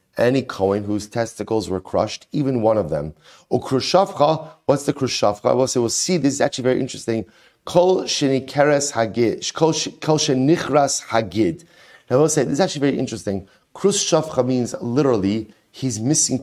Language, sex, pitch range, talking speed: English, male, 115-145 Hz, 150 wpm